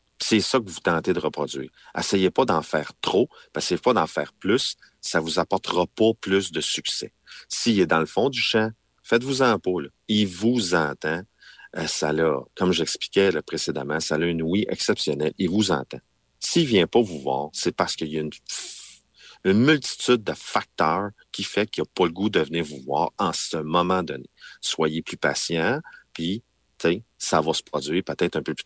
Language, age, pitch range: French, 40-59, 75-95 Hz